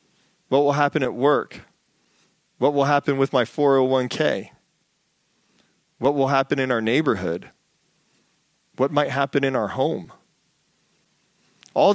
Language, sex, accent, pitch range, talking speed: English, male, American, 120-145 Hz, 120 wpm